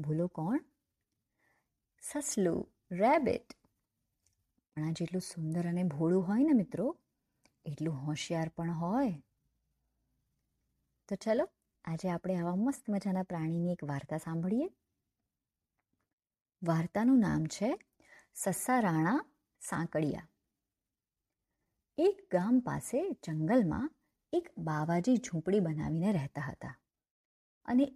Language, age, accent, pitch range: Gujarati, 30-49, native, 160-250 Hz